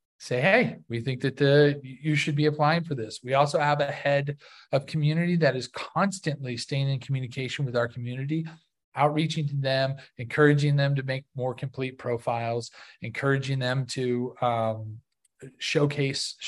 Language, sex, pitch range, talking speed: English, male, 130-160 Hz, 155 wpm